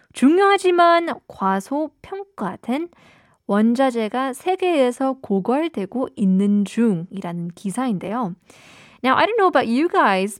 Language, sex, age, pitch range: Korean, female, 20-39, 200-275 Hz